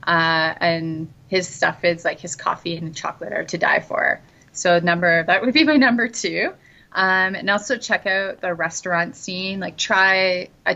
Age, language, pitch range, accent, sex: 30-49, Japanese, 160-190 Hz, American, female